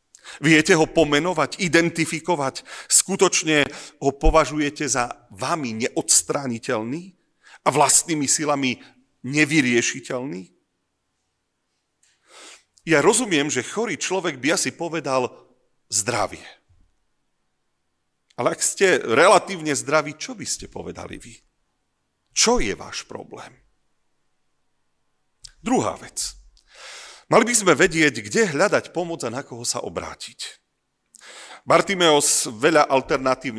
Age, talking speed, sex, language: 40-59, 95 wpm, male, Slovak